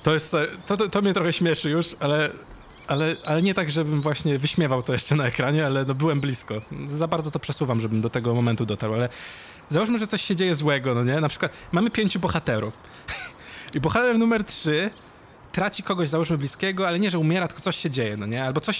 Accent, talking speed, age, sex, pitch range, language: native, 215 wpm, 20-39, male, 130-170 Hz, Polish